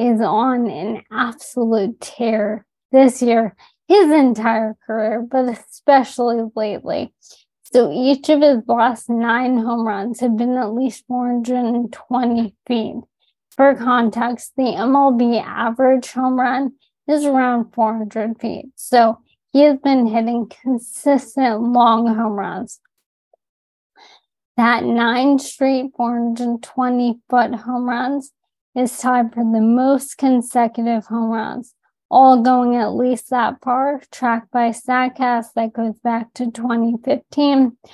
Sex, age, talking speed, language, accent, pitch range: female, 20-39, 120 wpm, English, American, 230-255 Hz